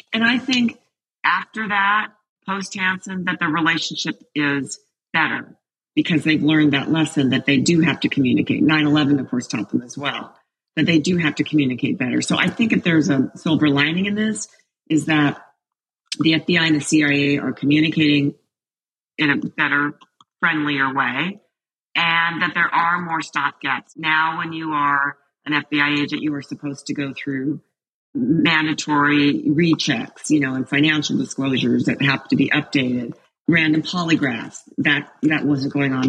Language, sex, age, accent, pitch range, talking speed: English, female, 40-59, American, 140-165 Hz, 165 wpm